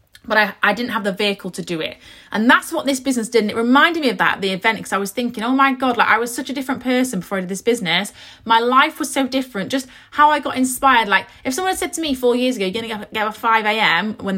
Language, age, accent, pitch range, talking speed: English, 30-49, British, 205-285 Hz, 300 wpm